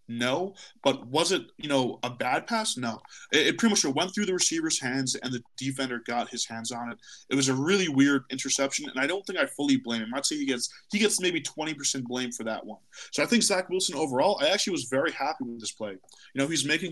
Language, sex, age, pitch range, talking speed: English, male, 20-39, 130-180 Hz, 250 wpm